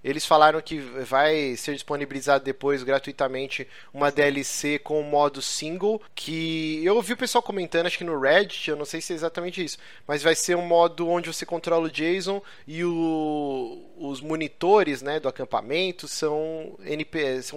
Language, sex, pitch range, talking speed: Portuguese, male, 145-185 Hz, 165 wpm